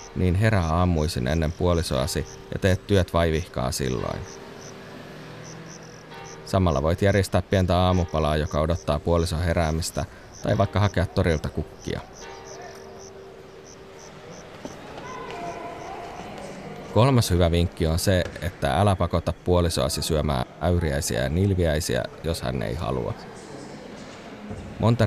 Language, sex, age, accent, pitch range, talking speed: Finnish, male, 30-49, native, 75-90 Hz, 100 wpm